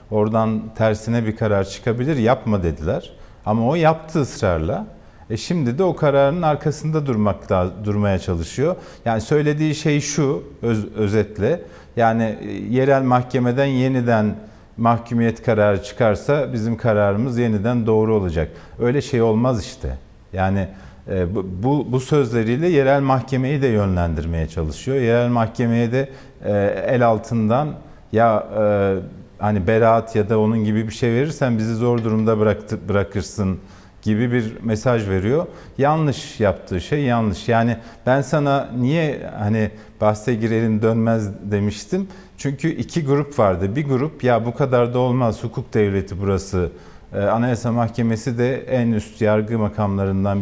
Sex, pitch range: male, 105-130 Hz